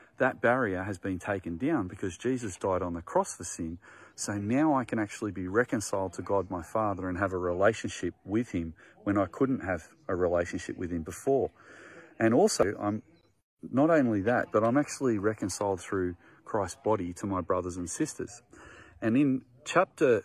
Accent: Australian